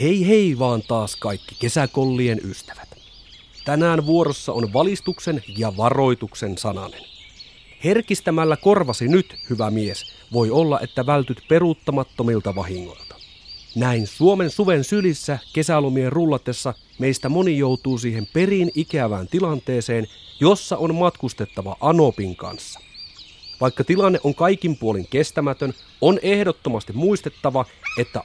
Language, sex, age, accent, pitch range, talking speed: Finnish, male, 30-49, native, 110-165 Hz, 115 wpm